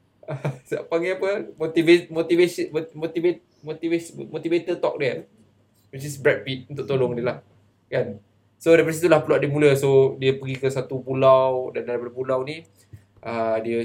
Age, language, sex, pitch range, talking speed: 20-39, Malay, male, 115-155 Hz, 160 wpm